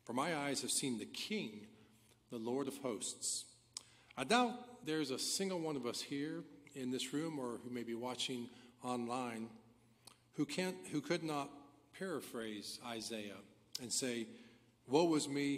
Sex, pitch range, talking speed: male, 115-140 Hz, 160 wpm